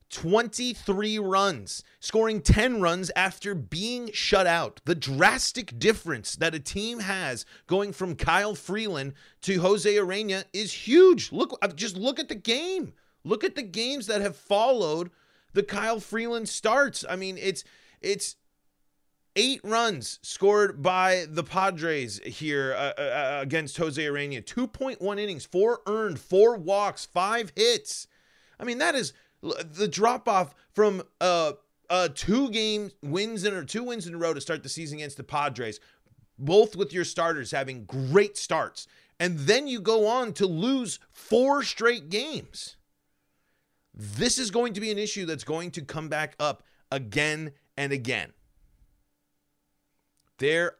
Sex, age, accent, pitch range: male, 30-49, American, 145-215 Hz